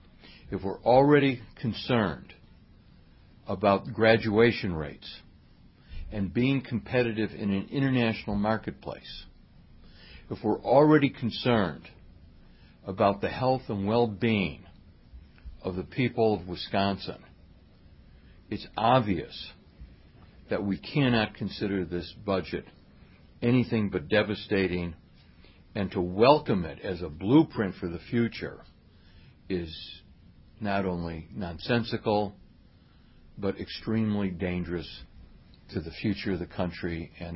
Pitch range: 85-110 Hz